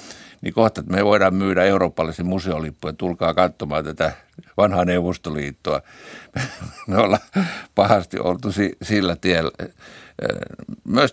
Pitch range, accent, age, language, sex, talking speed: 80-100 Hz, native, 60-79, Finnish, male, 110 wpm